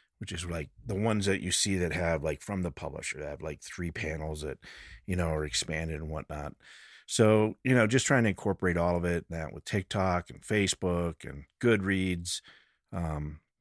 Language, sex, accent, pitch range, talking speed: English, male, American, 85-100 Hz, 195 wpm